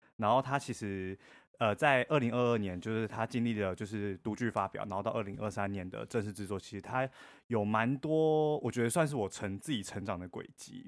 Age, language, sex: 20-39, Chinese, male